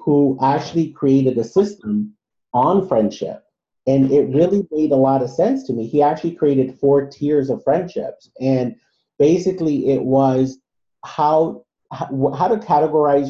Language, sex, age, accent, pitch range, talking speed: English, male, 40-59, American, 130-150 Hz, 145 wpm